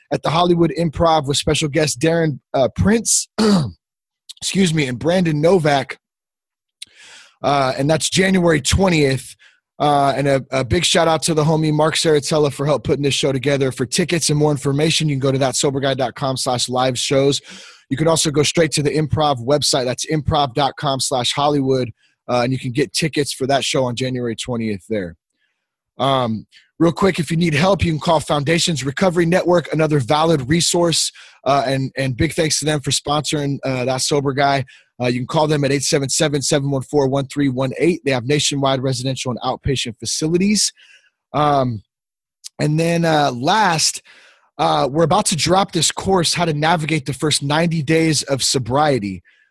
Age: 30-49